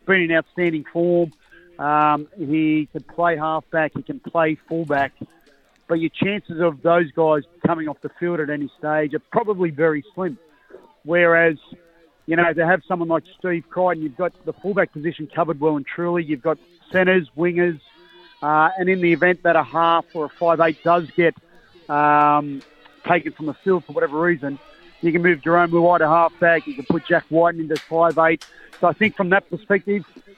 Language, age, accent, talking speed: English, 40-59, Australian, 185 wpm